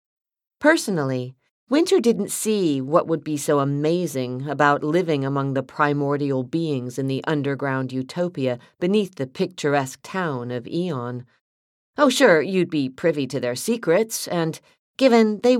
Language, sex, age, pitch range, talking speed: English, female, 40-59, 135-190 Hz, 140 wpm